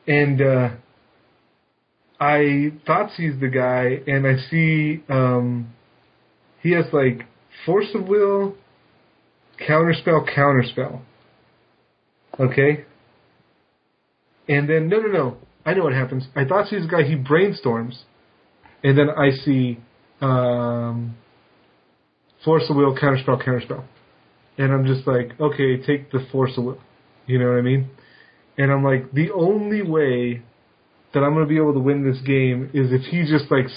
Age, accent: 30-49, American